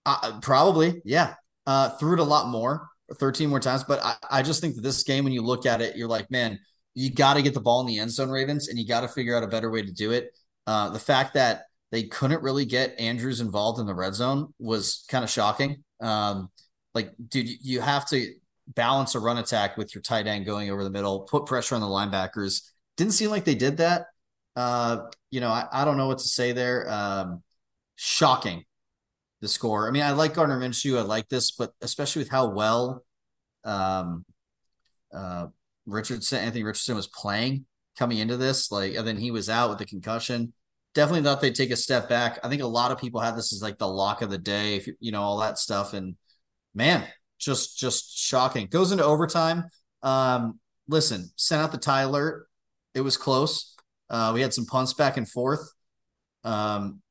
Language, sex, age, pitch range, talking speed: English, male, 30-49, 110-135 Hz, 210 wpm